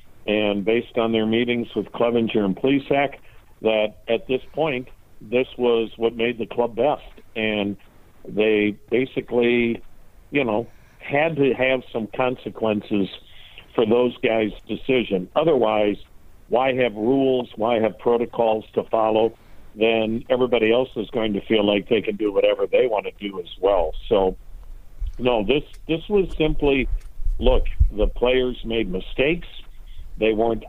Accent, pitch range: American, 105-130 Hz